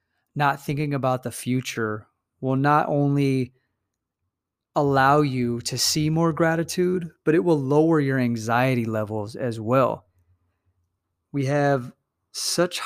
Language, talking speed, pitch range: English, 120 wpm, 115-145 Hz